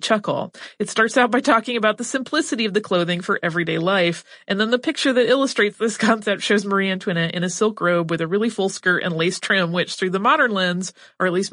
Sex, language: female, English